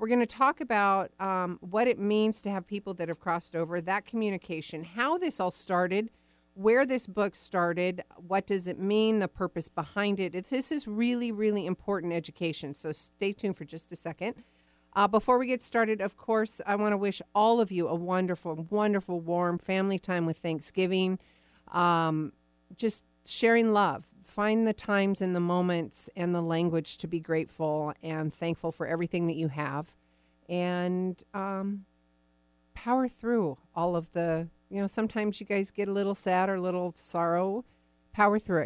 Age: 50-69